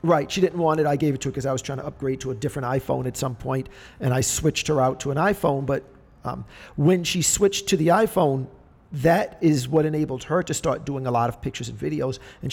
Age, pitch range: 50-69, 130-155 Hz